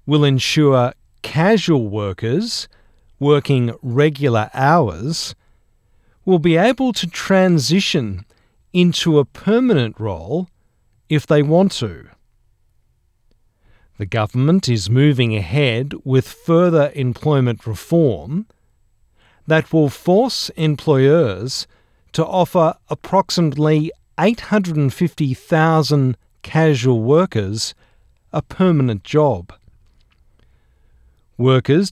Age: 50-69